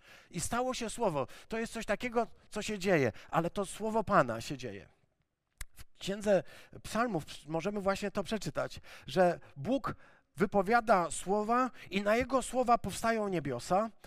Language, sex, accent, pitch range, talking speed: Polish, male, native, 170-220 Hz, 145 wpm